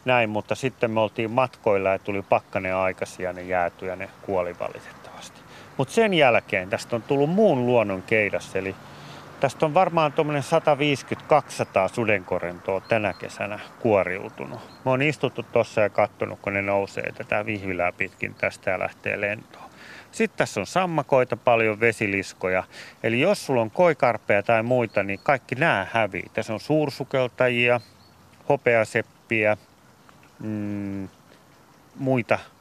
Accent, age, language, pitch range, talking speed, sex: native, 30-49, Finnish, 100-130 Hz, 135 wpm, male